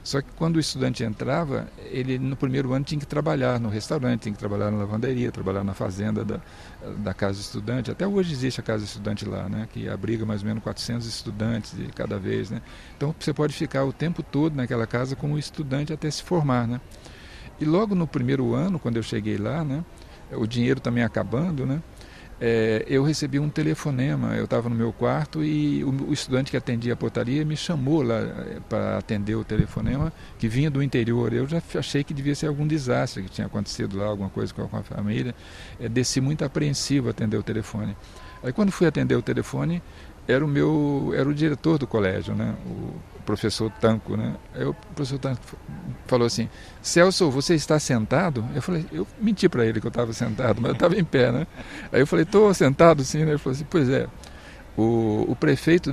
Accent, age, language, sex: Brazilian, 50-69, Portuguese, male